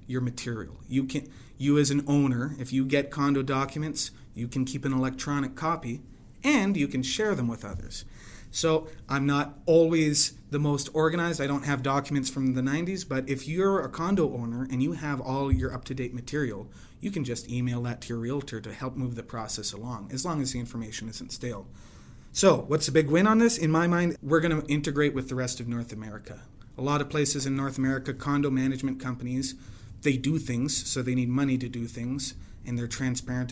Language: English